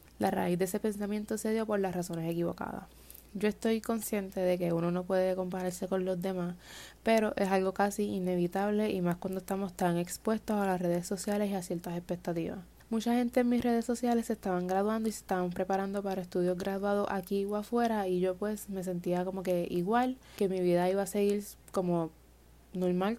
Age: 20-39